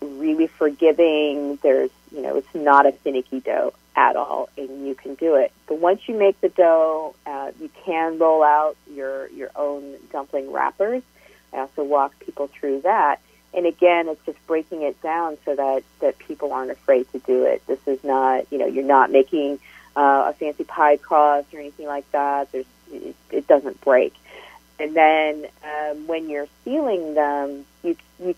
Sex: female